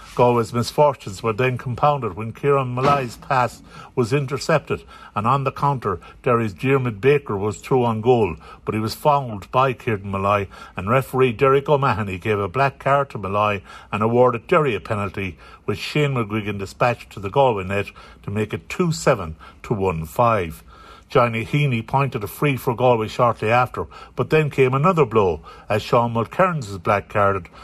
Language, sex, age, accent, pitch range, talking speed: English, male, 60-79, Irish, 105-135 Hz, 165 wpm